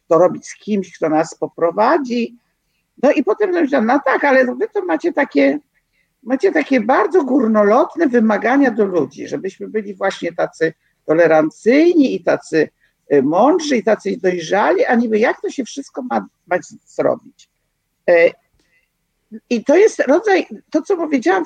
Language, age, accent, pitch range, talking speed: Polish, 50-69, native, 220-310 Hz, 140 wpm